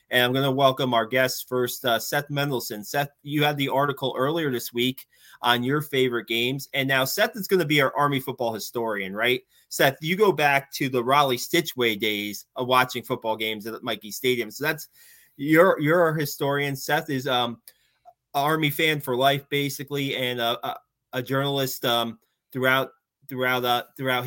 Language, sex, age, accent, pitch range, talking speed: English, male, 20-39, American, 125-145 Hz, 185 wpm